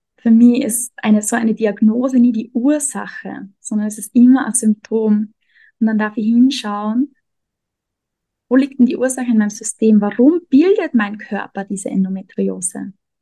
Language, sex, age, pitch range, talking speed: German, female, 20-39, 215-255 Hz, 160 wpm